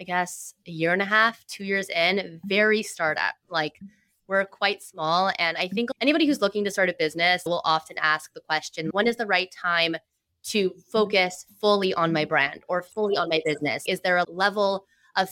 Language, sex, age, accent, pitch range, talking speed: English, female, 20-39, American, 165-200 Hz, 205 wpm